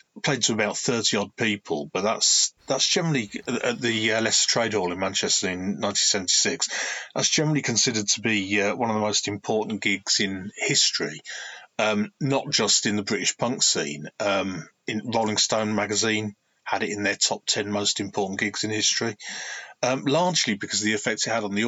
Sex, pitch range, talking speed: male, 105-130 Hz, 190 wpm